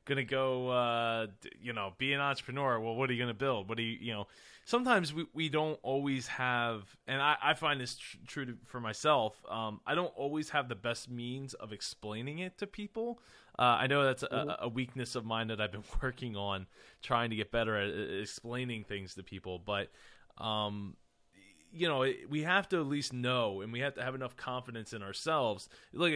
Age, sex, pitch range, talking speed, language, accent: 20-39, male, 110-140 Hz, 215 wpm, English, American